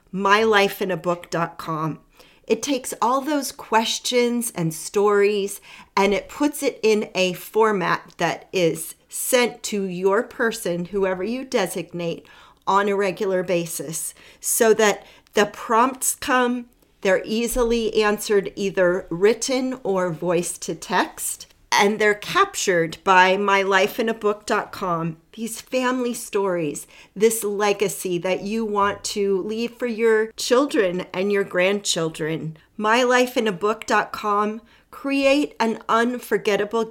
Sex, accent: female, American